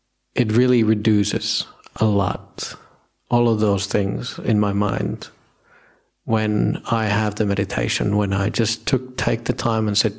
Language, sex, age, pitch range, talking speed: English, male, 50-69, 100-125 Hz, 145 wpm